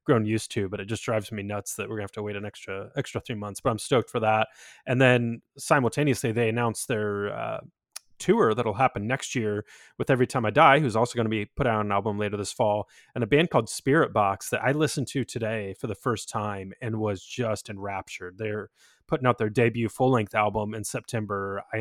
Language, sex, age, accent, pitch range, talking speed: English, male, 20-39, American, 105-130 Hz, 230 wpm